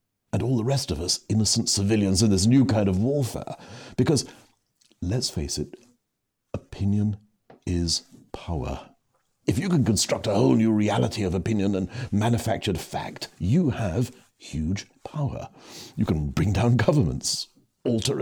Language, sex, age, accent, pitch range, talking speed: English, male, 60-79, British, 95-130 Hz, 145 wpm